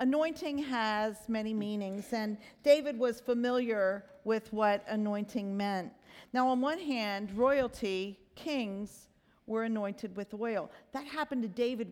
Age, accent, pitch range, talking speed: 50-69, American, 210-270 Hz, 130 wpm